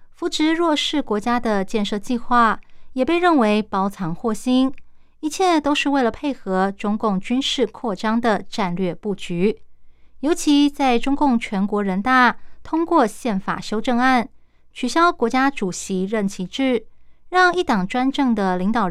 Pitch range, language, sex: 200-265 Hz, Chinese, female